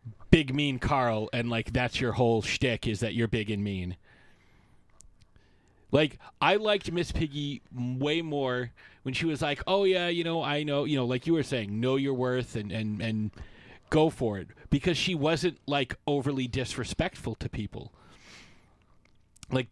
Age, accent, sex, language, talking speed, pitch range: 30-49, American, male, English, 170 wpm, 110-155 Hz